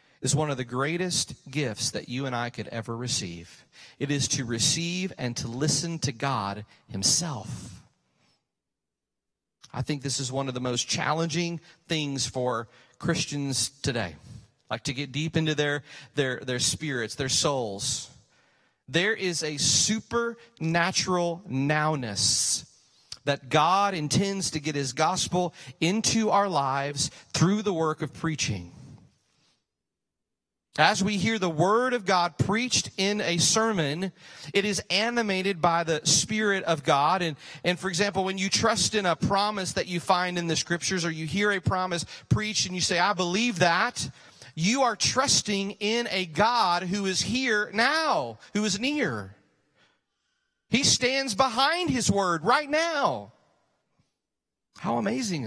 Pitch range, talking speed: 140-200 Hz, 145 wpm